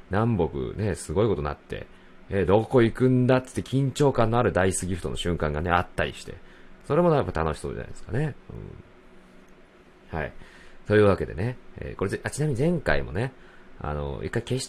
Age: 40-59